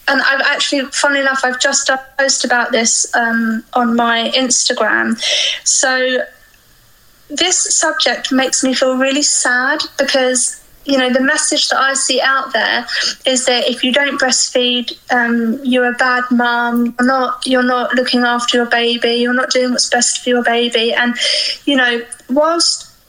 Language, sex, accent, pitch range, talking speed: English, female, British, 250-290 Hz, 165 wpm